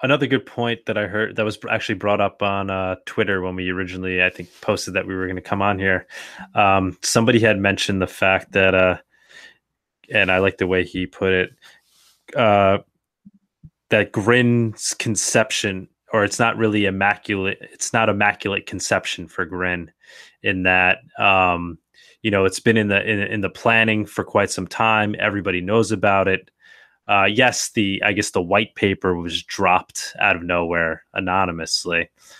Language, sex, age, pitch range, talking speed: English, male, 20-39, 95-110 Hz, 175 wpm